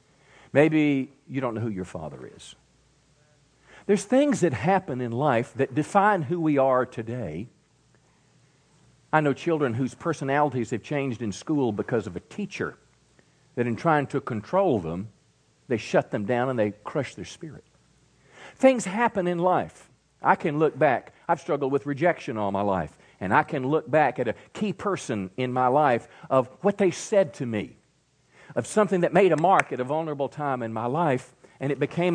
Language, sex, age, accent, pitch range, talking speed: English, male, 50-69, American, 130-180 Hz, 180 wpm